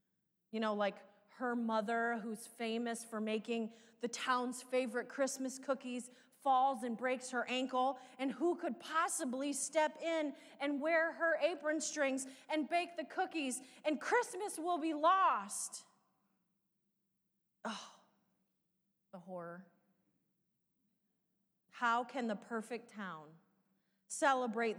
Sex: female